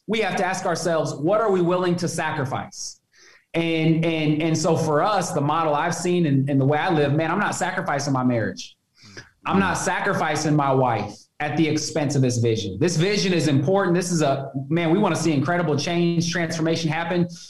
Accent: American